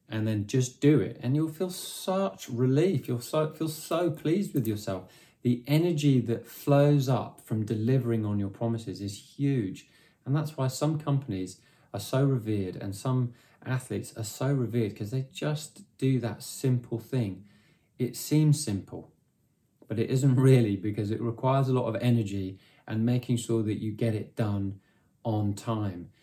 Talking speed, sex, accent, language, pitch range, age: 165 wpm, male, British, English, 100-130 Hz, 20-39